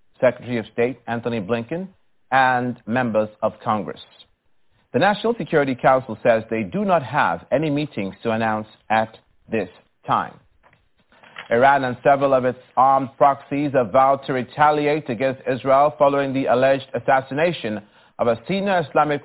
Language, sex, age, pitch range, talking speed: English, male, 40-59, 120-145 Hz, 145 wpm